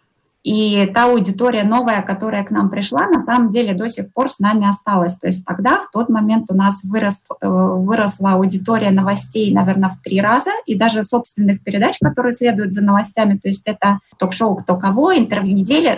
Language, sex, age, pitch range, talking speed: Russian, female, 20-39, 200-240 Hz, 185 wpm